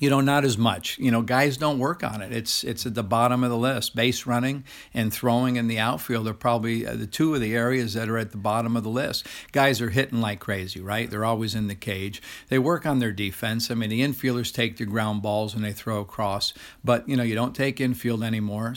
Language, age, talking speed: English, 50-69, 250 wpm